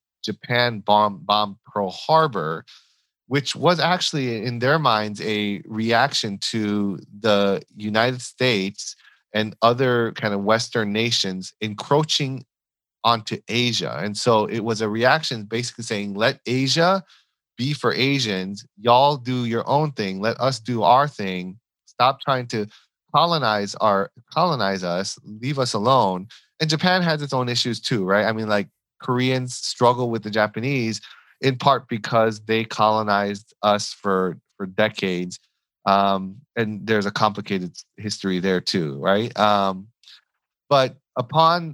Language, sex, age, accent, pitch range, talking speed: English, male, 30-49, American, 105-130 Hz, 140 wpm